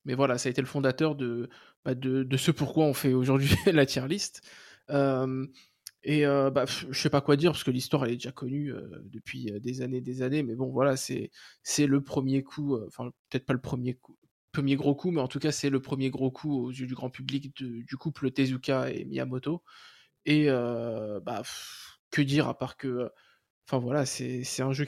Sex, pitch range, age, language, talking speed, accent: male, 130-145 Hz, 20-39, French, 230 wpm, French